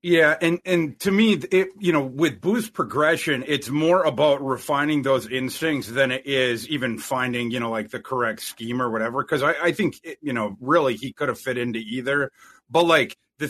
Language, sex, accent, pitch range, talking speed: English, male, American, 135-180 Hz, 210 wpm